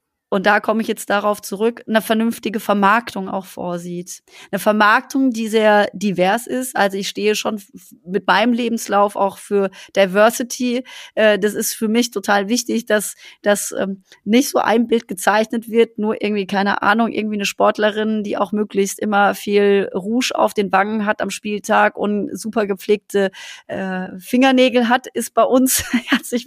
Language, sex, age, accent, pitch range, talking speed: German, female, 30-49, German, 190-230 Hz, 165 wpm